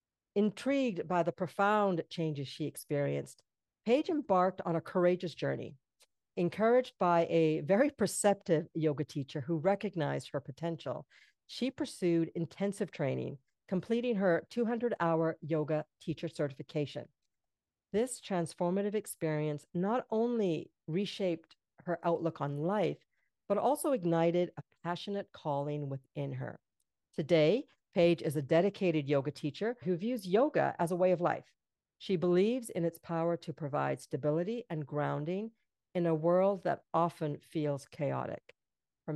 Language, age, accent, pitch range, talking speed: English, 50-69, American, 155-190 Hz, 130 wpm